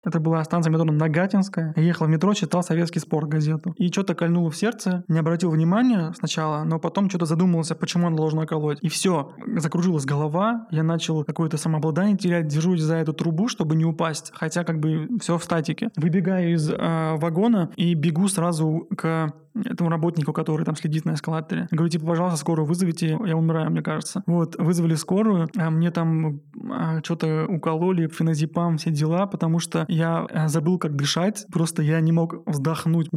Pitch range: 160-180 Hz